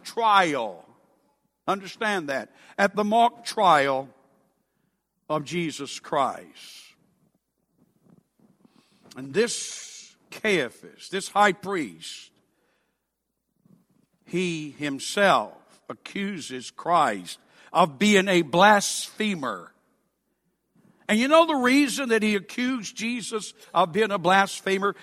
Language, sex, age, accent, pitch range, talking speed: English, male, 60-79, American, 165-220 Hz, 90 wpm